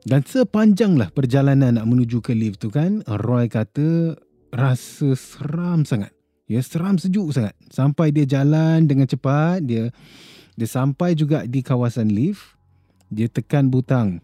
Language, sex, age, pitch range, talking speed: Malay, male, 20-39, 95-135 Hz, 140 wpm